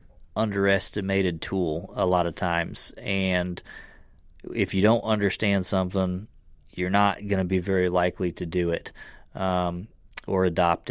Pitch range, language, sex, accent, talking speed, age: 90-100 Hz, English, male, American, 140 wpm, 30-49